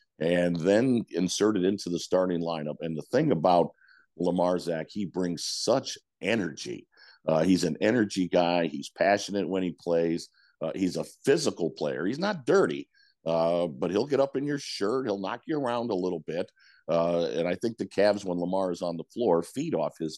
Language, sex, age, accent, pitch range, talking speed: English, male, 50-69, American, 85-105 Hz, 195 wpm